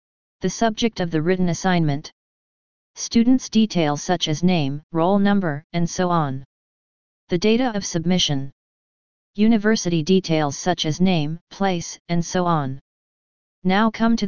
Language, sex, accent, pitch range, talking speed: English, female, American, 165-190 Hz, 135 wpm